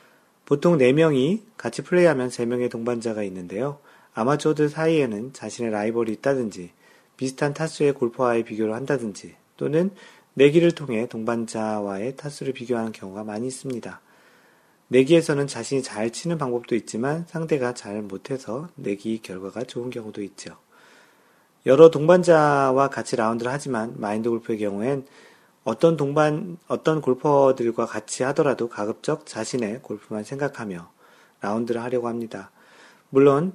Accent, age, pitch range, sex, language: native, 40-59, 110-145 Hz, male, Korean